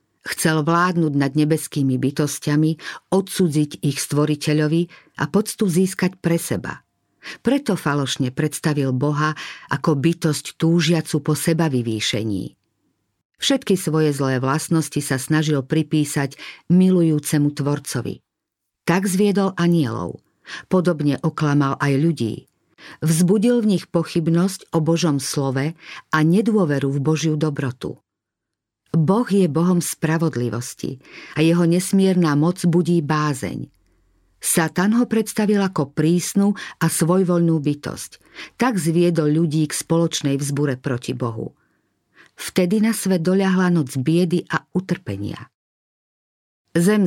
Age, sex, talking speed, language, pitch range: 50-69, female, 110 wpm, Slovak, 140-175 Hz